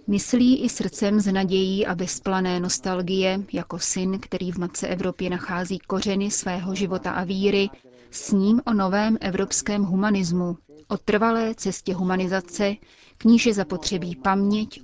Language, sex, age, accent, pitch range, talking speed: Czech, female, 30-49, native, 185-210 Hz, 135 wpm